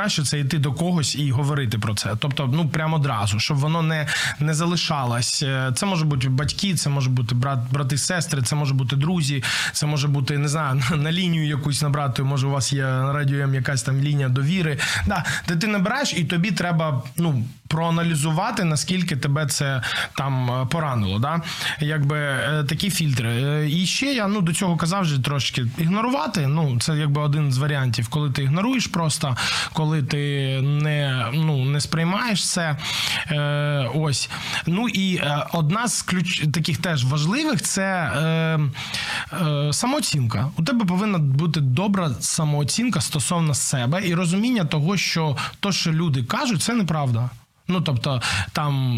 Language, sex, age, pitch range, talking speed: Ukrainian, male, 20-39, 135-165 Hz, 165 wpm